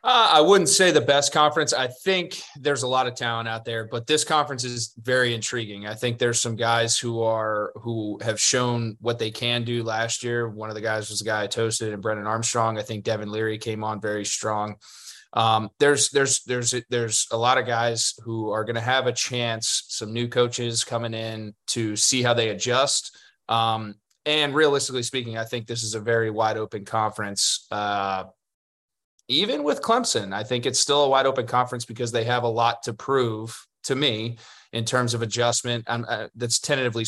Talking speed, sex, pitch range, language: 200 wpm, male, 110-120 Hz, English